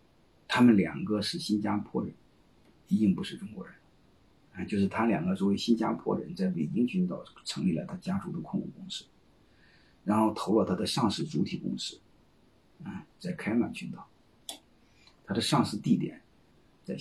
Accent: native